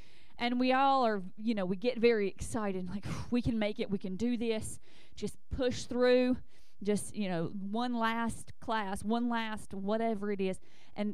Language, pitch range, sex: English, 195-240 Hz, female